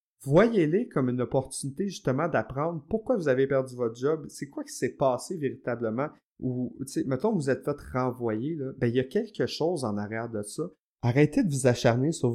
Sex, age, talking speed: male, 30-49, 205 wpm